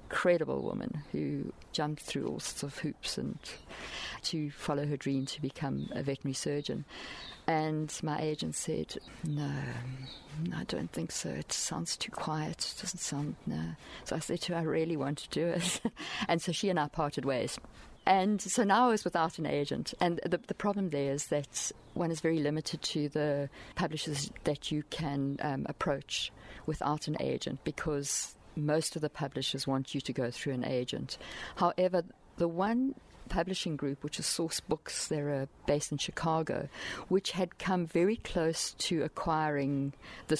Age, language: 50-69, English